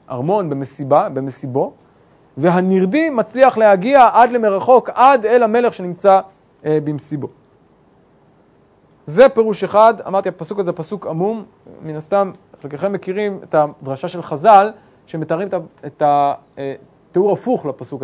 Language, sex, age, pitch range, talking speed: English, male, 30-49, 155-195 Hz, 120 wpm